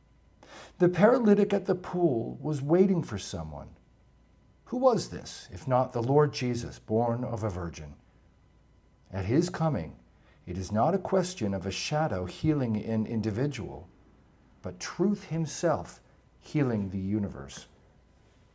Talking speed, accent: 135 wpm, American